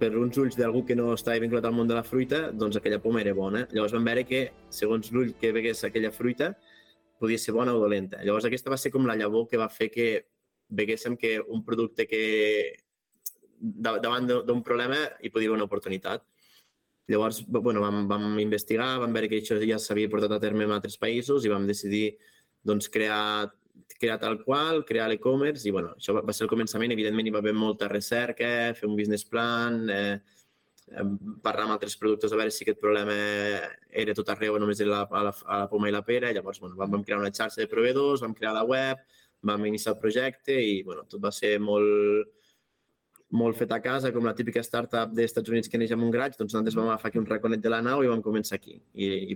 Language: Spanish